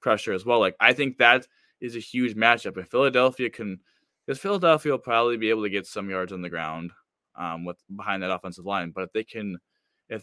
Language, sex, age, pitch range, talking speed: English, male, 20-39, 105-130 Hz, 225 wpm